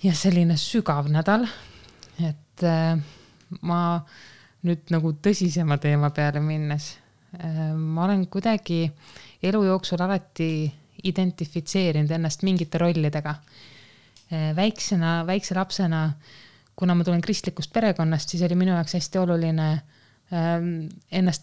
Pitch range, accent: 155-185 Hz, Finnish